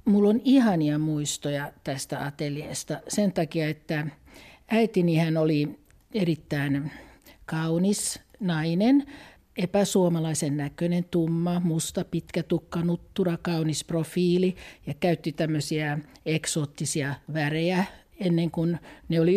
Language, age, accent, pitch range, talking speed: Finnish, 50-69, native, 155-195 Hz, 100 wpm